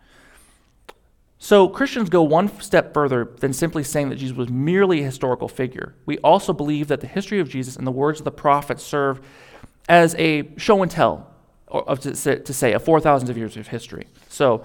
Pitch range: 130-170 Hz